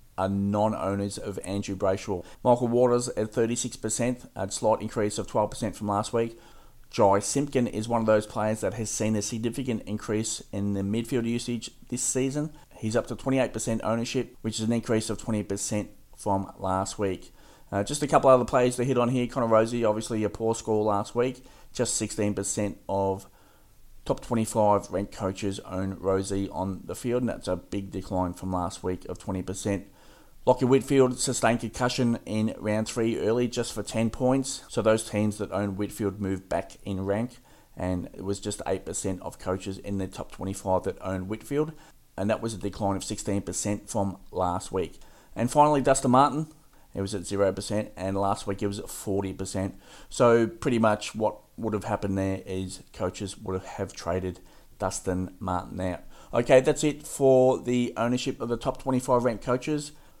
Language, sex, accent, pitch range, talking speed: English, male, Australian, 100-120 Hz, 175 wpm